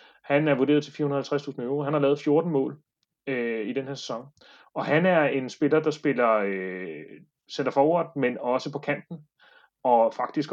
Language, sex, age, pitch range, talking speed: Danish, male, 30-49, 120-150 Hz, 180 wpm